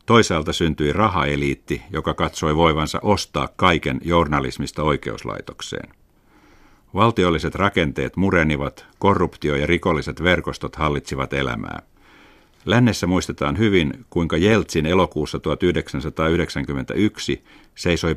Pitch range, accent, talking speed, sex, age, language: 70-90 Hz, native, 90 wpm, male, 50-69, Finnish